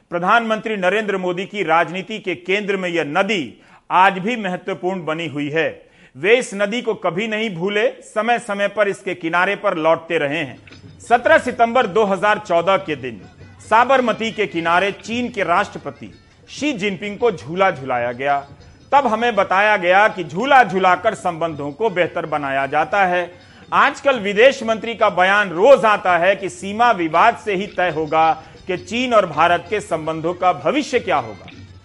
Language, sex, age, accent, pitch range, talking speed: Hindi, male, 40-59, native, 160-215 Hz, 165 wpm